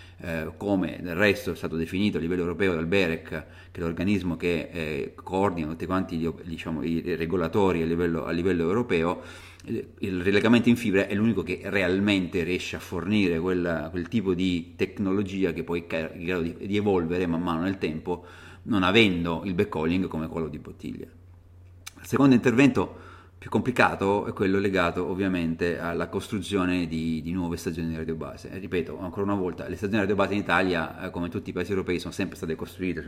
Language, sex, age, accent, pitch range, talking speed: Italian, male, 30-49, native, 85-95 Hz, 180 wpm